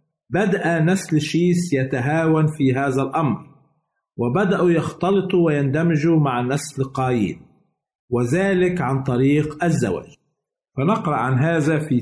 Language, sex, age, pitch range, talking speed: Arabic, male, 50-69, 135-170 Hz, 105 wpm